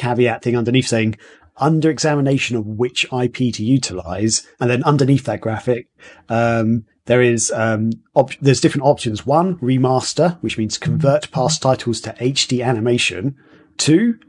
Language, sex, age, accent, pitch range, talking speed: English, male, 40-59, British, 115-145 Hz, 145 wpm